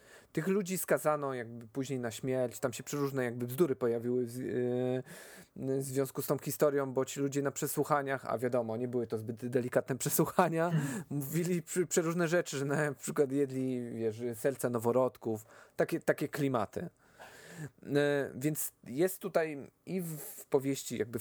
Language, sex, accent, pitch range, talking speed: English, male, Polish, 125-155 Hz, 140 wpm